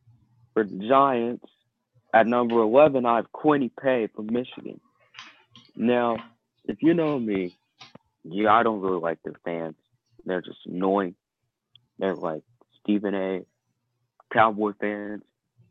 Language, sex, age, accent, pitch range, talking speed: English, male, 30-49, American, 95-120 Hz, 125 wpm